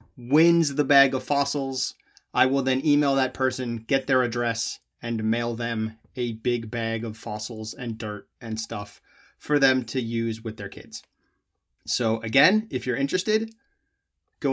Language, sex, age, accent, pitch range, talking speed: English, male, 30-49, American, 115-155 Hz, 160 wpm